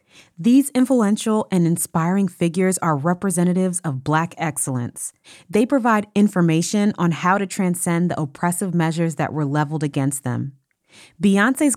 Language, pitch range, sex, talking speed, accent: English, 155-195 Hz, female, 135 wpm, American